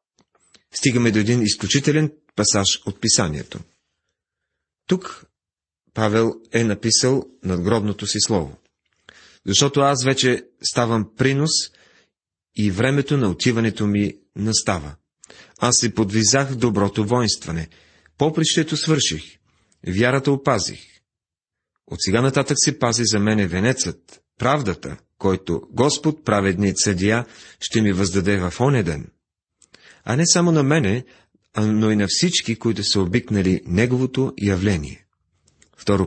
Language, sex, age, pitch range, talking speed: Bulgarian, male, 40-59, 95-125 Hz, 115 wpm